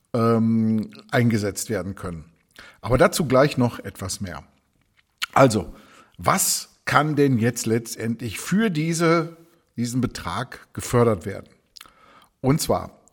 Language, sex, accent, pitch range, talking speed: German, male, German, 115-150 Hz, 105 wpm